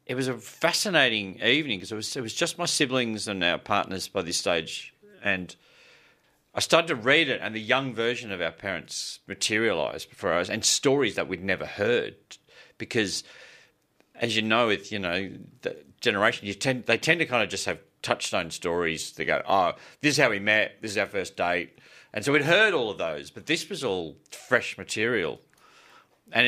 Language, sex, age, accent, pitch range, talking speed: English, male, 40-59, Australian, 90-120 Hz, 190 wpm